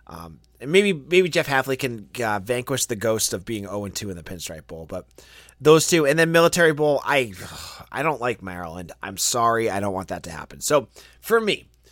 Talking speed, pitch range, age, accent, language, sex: 210 wpm, 100-145 Hz, 30-49, American, English, male